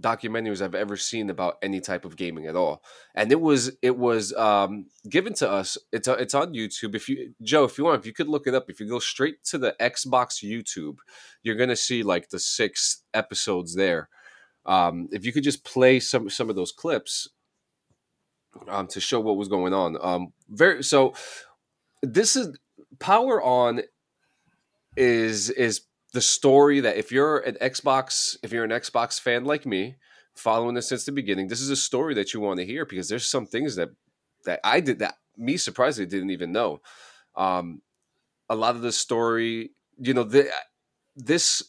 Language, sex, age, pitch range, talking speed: English, male, 20-39, 100-130 Hz, 190 wpm